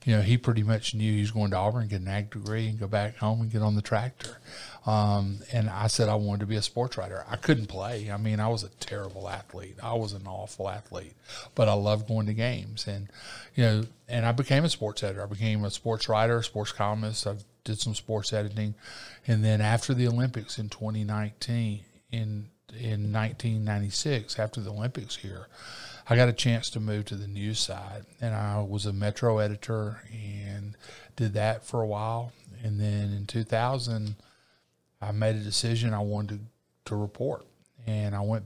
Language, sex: English, male